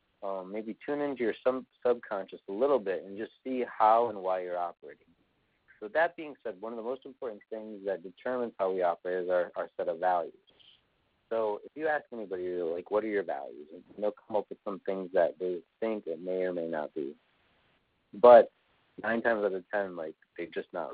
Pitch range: 90-115 Hz